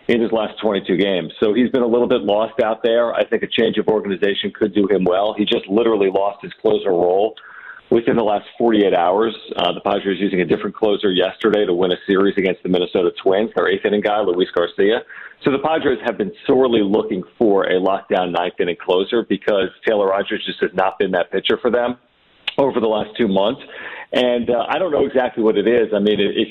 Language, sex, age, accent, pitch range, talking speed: English, male, 40-59, American, 105-130 Hz, 225 wpm